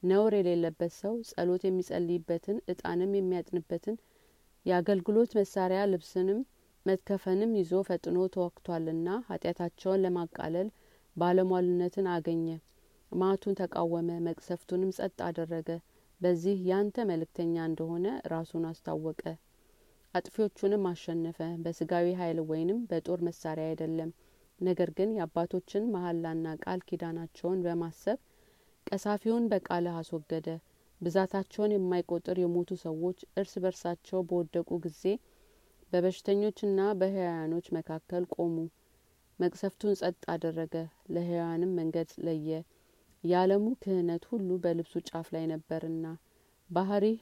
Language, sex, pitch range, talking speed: Amharic, female, 165-190 Hz, 90 wpm